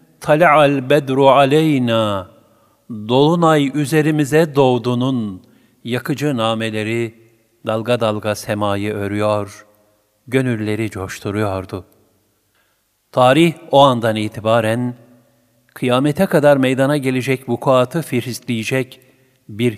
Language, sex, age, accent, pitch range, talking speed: Turkish, male, 50-69, native, 110-140 Hz, 80 wpm